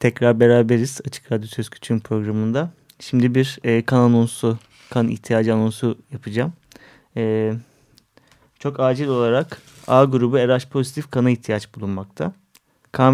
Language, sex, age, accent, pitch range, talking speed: Turkish, male, 30-49, native, 115-135 Hz, 125 wpm